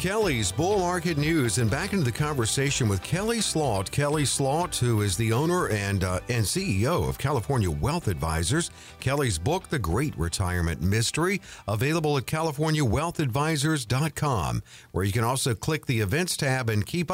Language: English